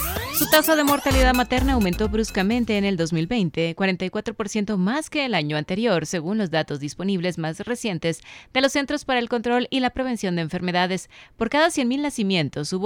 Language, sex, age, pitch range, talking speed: Spanish, female, 30-49, 160-230 Hz, 175 wpm